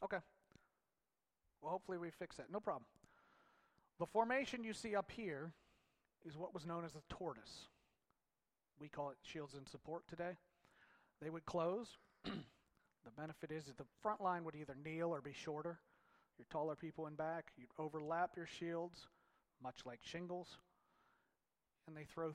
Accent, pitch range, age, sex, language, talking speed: American, 145-185 Hz, 40-59, male, English, 160 wpm